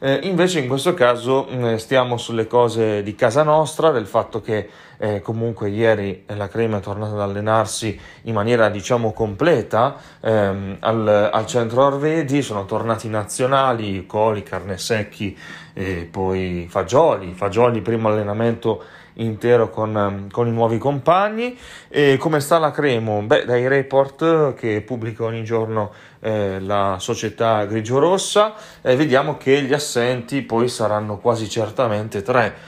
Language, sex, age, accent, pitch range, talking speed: Italian, male, 30-49, native, 105-135 Hz, 130 wpm